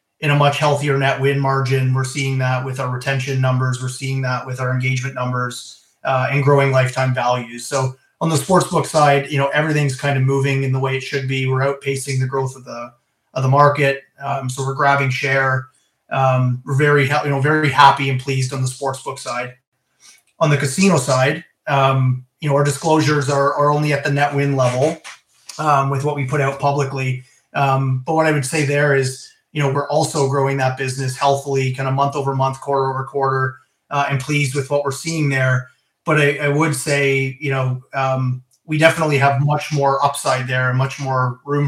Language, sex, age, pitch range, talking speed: English, male, 30-49, 130-145 Hz, 210 wpm